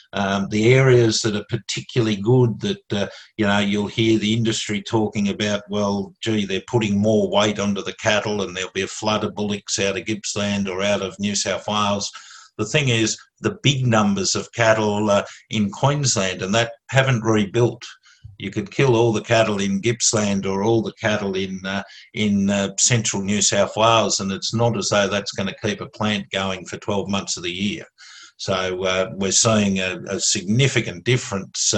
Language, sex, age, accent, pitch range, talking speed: English, male, 50-69, Australian, 100-115 Hz, 195 wpm